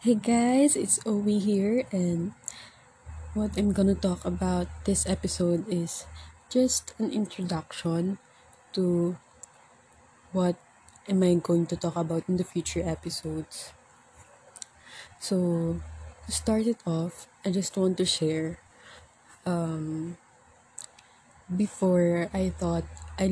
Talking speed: 115 wpm